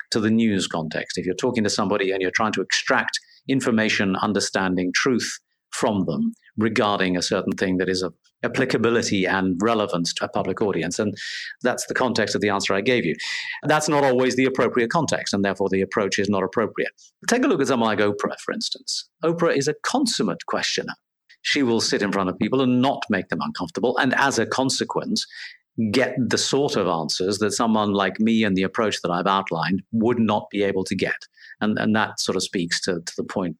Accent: British